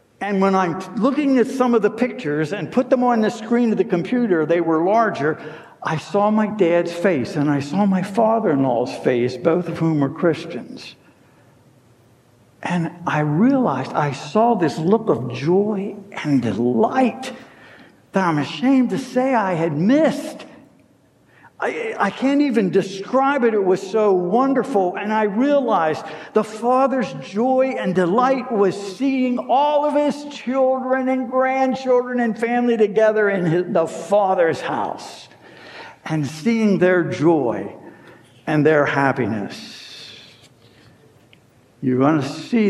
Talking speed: 140 wpm